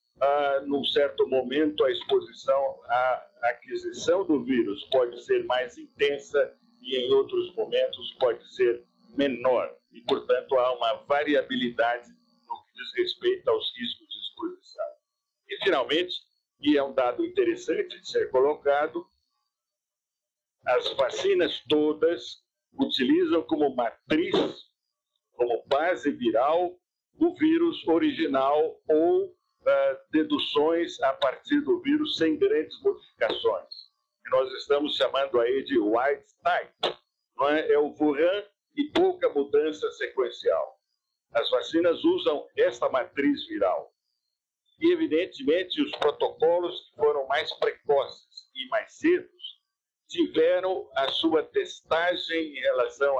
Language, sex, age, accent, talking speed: Portuguese, male, 60-79, Brazilian, 120 wpm